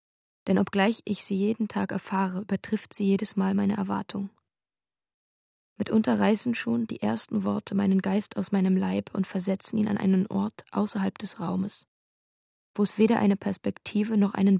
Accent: German